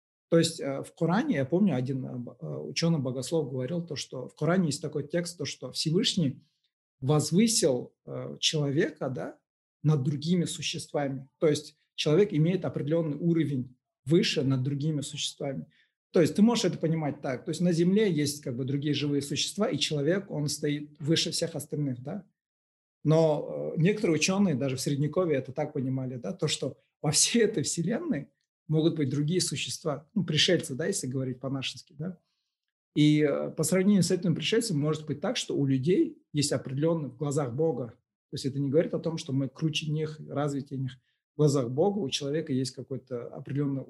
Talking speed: 170 wpm